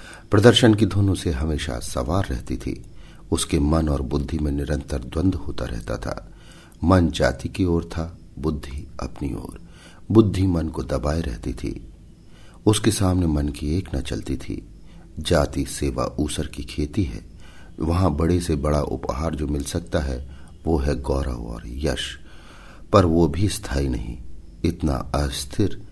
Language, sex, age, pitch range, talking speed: Hindi, male, 50-69, 70-85 Hz, 155 wpm